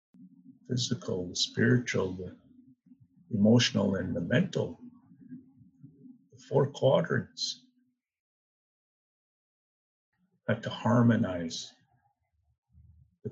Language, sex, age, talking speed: English, male, 50-69, 75 wpm